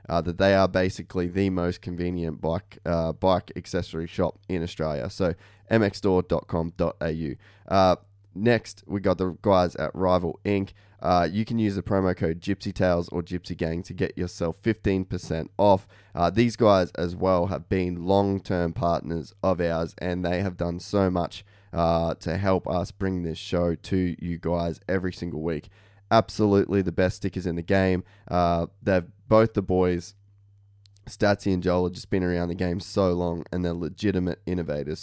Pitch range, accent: 85-100 Hz, Australian